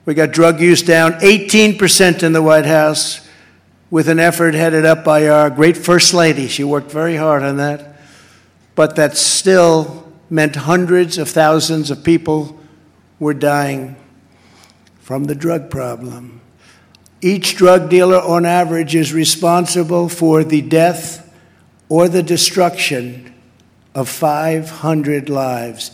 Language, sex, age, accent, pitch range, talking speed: English, male, 60-79, American, 145-170 Hz, 130 wpm